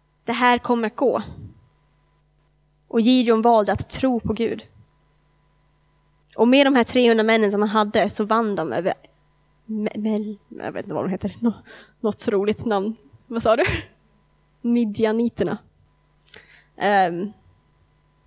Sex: female